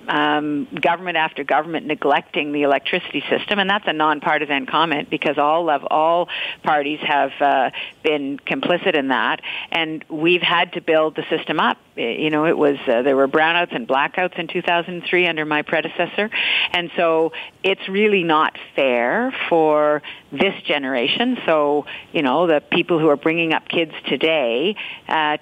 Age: 50-69